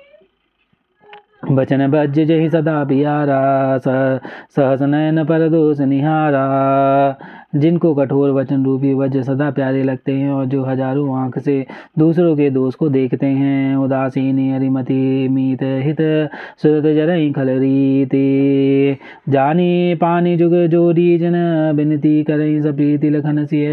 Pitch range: 135-155 Hz